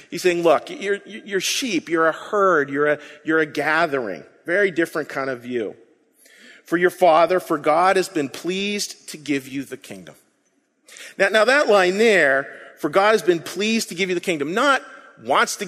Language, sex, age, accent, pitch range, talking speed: English, male, 40-59, American, 170-245 Hz, 190 wpm